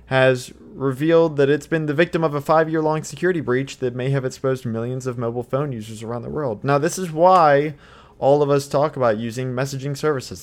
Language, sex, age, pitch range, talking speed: English, male, 20-39, 115-150 Hz, 205 wpm